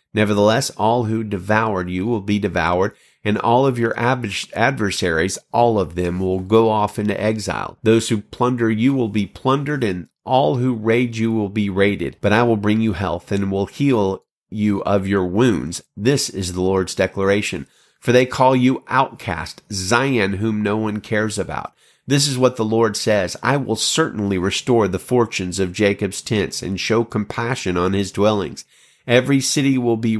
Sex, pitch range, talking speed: male, 100-125 Hz, 180 wpm